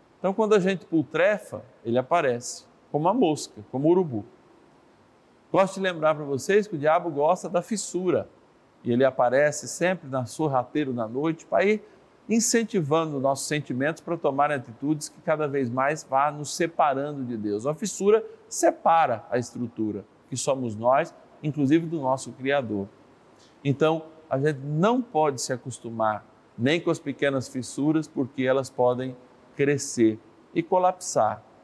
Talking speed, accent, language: 150 wpm, Brazilian, Portuguese